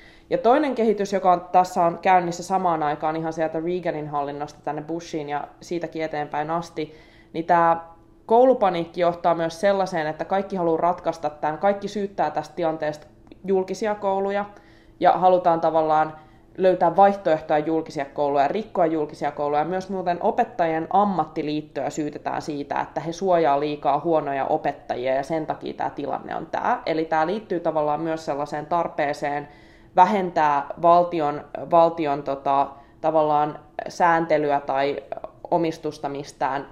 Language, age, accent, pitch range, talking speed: Finnish, 20-39, native, 150-175 Hz, 135 wpm